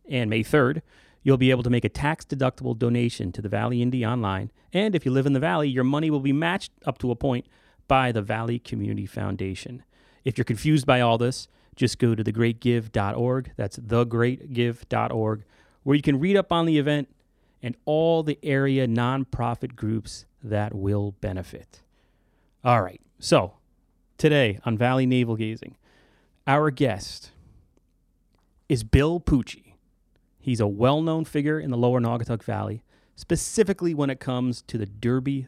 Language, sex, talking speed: English, male, 160 wpm